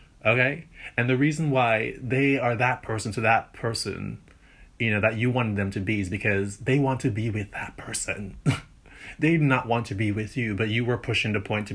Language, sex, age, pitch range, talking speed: English, male, 30-49, 100-120 Hz, 225 wpm